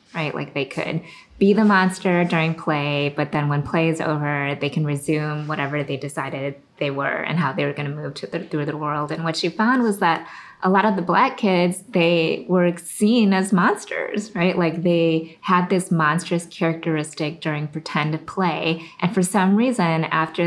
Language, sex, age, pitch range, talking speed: English, female, 20-39, 160-190 Hz, 190 wpm